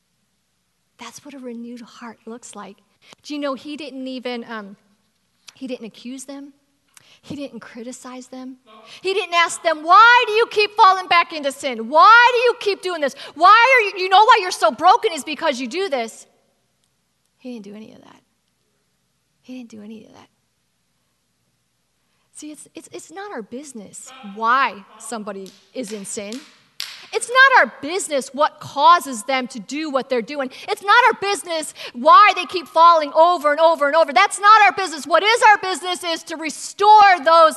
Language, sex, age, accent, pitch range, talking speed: English, female, 40-59, American, 220-340 Hz, 185 wpm